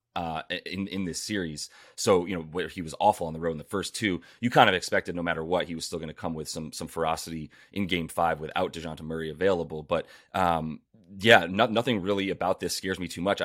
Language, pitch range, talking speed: English, 85-95 Hz, 245 wpm